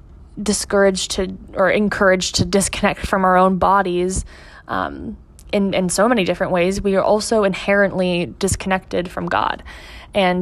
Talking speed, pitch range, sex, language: 145 wpm, 175-210 Hz, female, English